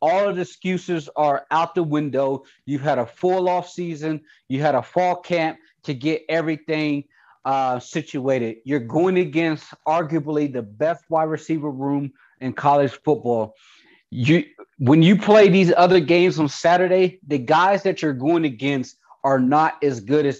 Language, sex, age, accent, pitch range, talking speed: English, male, 30-49, American, 135-160 Hz, 165 wpm